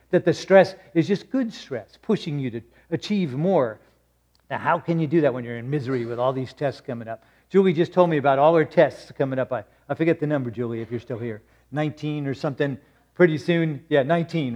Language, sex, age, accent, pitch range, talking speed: English, male, 50-69, American, 135-180 Hz, 225 wpm